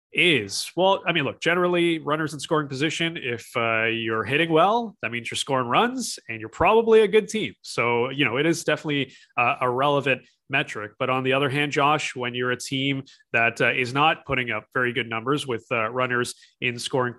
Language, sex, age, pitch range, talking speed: English, male, 30-49, 120-150 Hz, 205 wpm